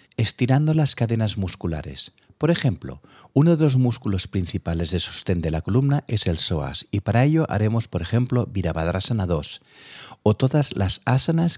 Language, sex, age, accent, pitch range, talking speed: Spanish, male, 40-59, Spanish, 85-120 Hz, 160 wpm